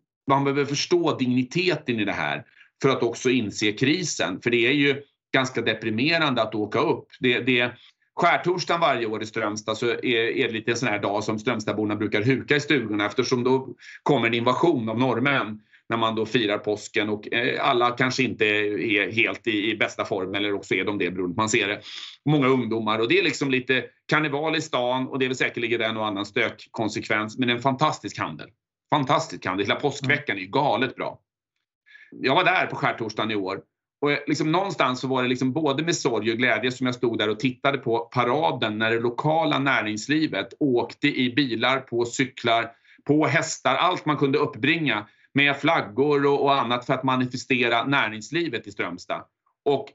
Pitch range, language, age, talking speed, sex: 110-140 Hz, Swedish, 30-49, 190 wpm, male